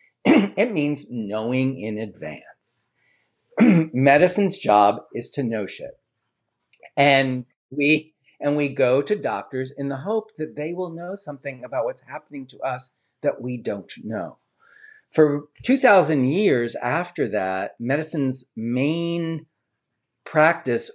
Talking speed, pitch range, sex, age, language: 125 wpm, 115-140 Hz, male, 40-59, English